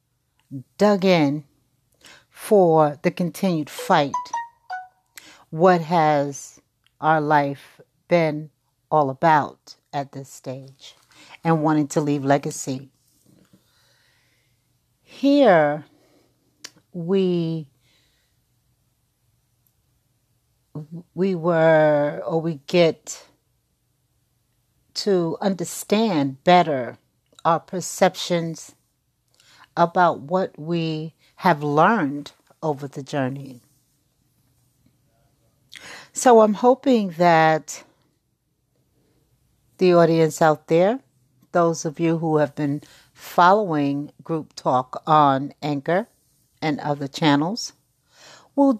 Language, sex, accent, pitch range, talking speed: English, female, American, 135-175 Hz, 80 wpm